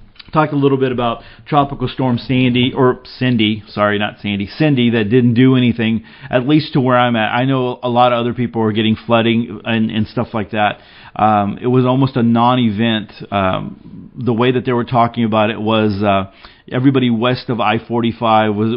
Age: 40-59